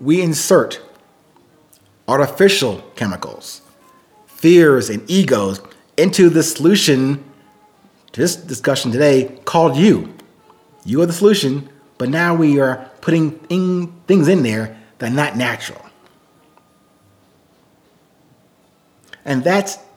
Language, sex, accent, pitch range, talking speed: English, male, American, 130-195 Hz, 100 wpm